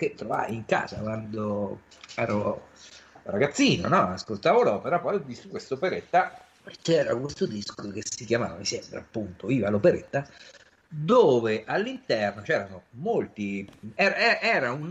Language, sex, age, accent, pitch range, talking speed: Italian, male, 50-69, native, 100-150 Hz, 115 wpm